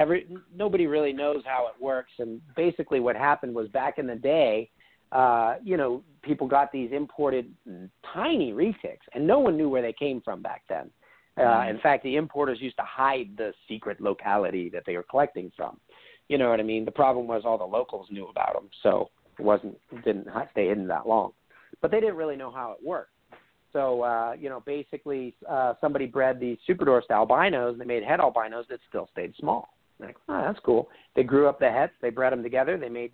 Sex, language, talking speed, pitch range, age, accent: male, English, 210 wpm, 120-145 Hz, 40-59, American